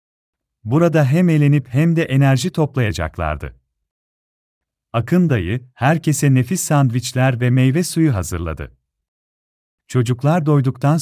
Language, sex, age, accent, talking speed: Turkish, male, 40-59, native, 100 wpm